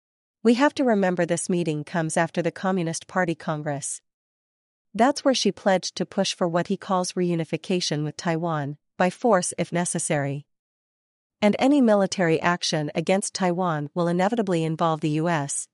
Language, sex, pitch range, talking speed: English, female, 160-200 Hz, 155 wpm